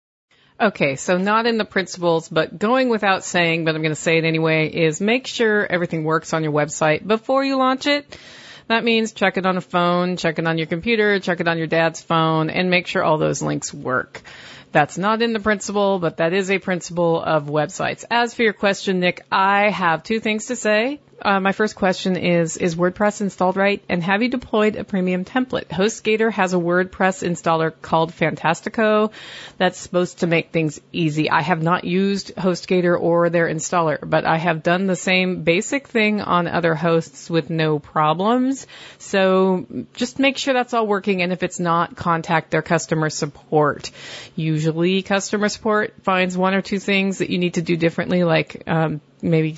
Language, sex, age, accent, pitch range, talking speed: English, female, 40-59, American, 165-210 Hz, 195 wpm